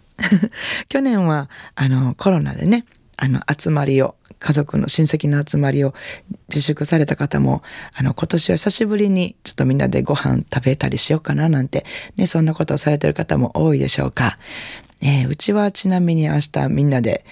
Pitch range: 130-165 Hz